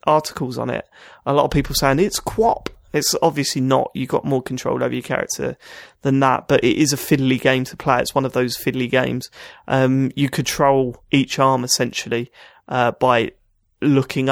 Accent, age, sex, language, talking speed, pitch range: British, 30-49, male, English, 190 wpm, 130-150 Hz